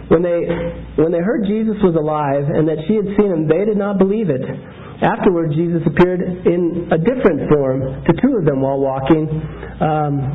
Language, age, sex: English, 40-59, male